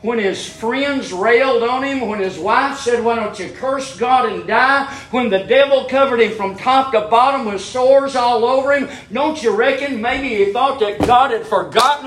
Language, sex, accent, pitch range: English, male, American, 215-270 Hz